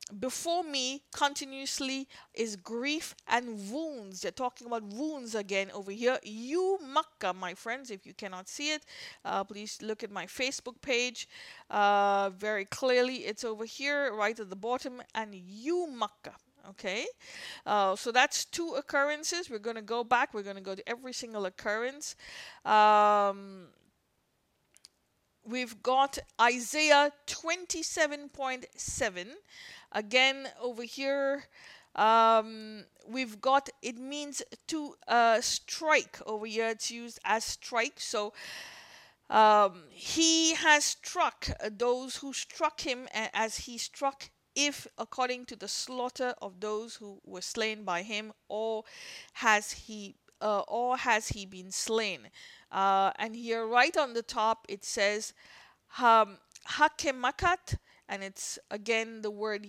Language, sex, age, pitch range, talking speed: English, female, 50-69, 210-275 Hz, 135 wpm